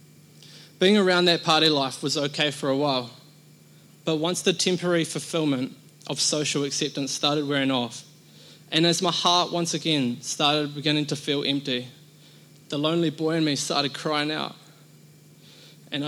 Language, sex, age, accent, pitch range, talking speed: English, male, 20-39, Australian, 145-170 Hz, 155 wpm